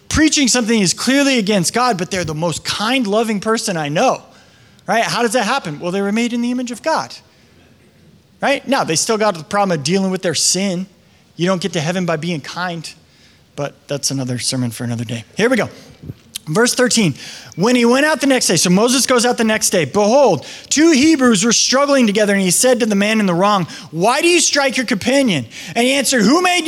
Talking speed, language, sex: 225 wpm, English, male